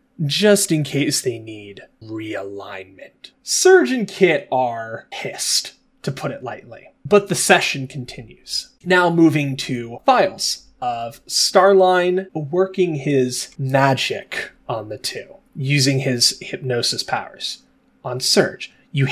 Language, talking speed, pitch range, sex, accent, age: English, 120 wpm, 130-175 Hz, male, American, 20-39